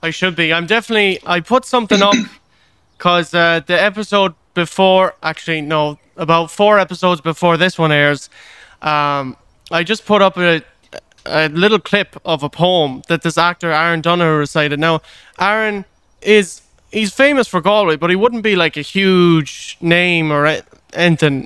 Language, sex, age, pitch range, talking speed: English, male, 20-39, 155-185 Hz, 160 wpm